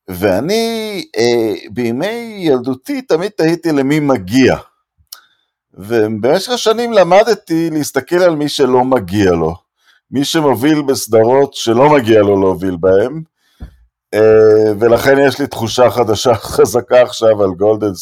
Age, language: 50-69, Hebrew